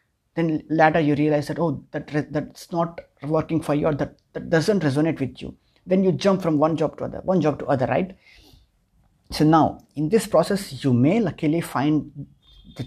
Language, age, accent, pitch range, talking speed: English, 30-49, Indian, 135-160 Hz, 200 wpm